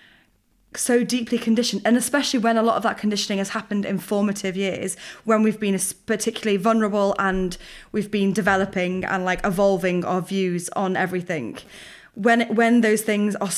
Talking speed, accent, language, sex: 165 wpm, British, English, female